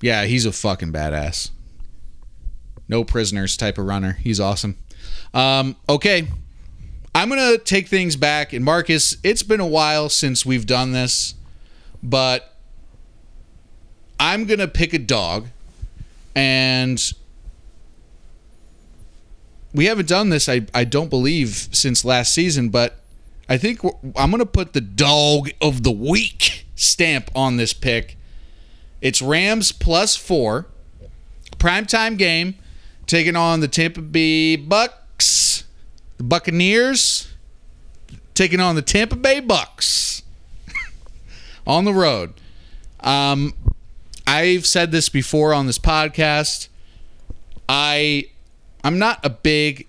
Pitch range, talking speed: 100-155 Hz, 115 wpm